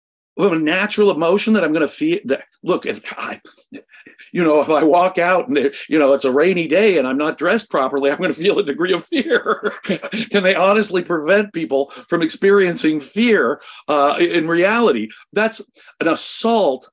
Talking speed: 190 wpm